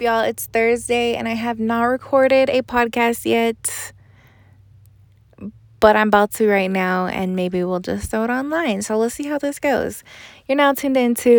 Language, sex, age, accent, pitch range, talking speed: English, female, 20-39, American, 195-250 Hz, 180 wpm